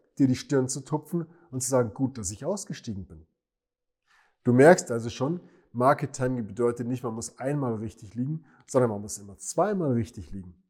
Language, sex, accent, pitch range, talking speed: German, male, German, 110-140 Hz, 185 wpm